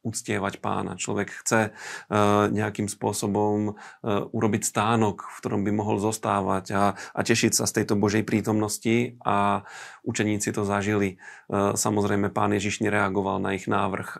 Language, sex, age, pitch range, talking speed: Slovak, male, 40-59, 100-115 Hz, 150 wpm